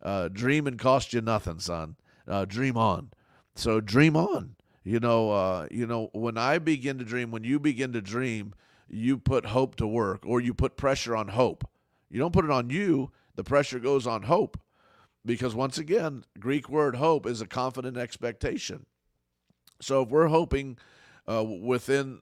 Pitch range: 105-130 Hz